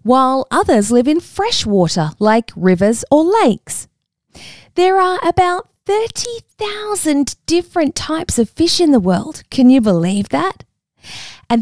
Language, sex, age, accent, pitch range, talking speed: English, female, 20-39, Australian, 195-315 Hz, 135 wpm